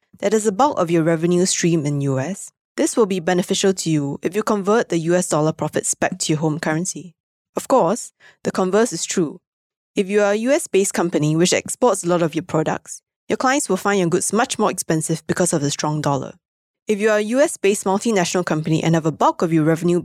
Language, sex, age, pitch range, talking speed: English, female, 20-39, 160-205 Hz, 225 wpm